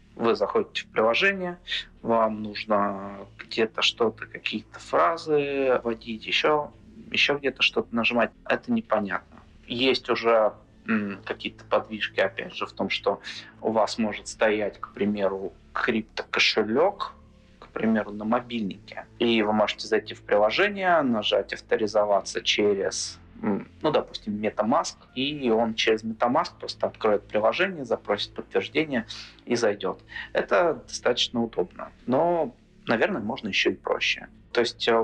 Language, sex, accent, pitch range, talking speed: Russian, male, native, 105-120 Hz, 125 wpm